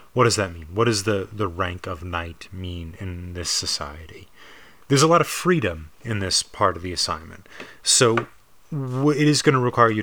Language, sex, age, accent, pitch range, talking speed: English, male, 30-49, American, 90-115 Hz, 195 wpm